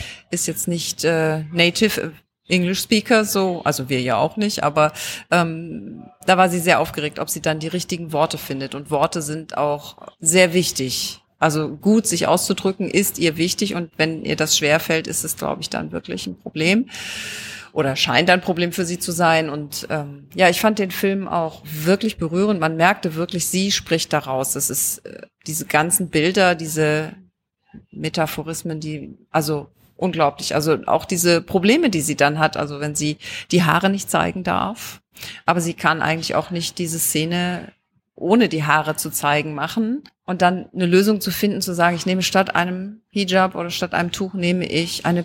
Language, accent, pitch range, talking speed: German, German, 155-185 Hz, 180 wpm